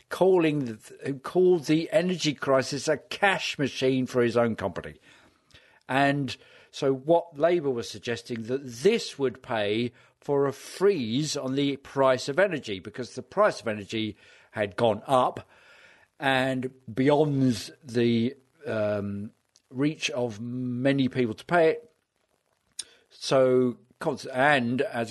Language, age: English, 50-69